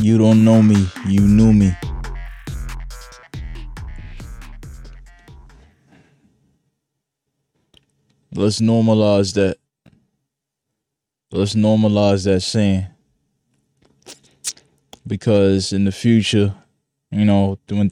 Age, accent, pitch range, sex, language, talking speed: 20-39, American, 100-115 Hz, male, English, 70 wpm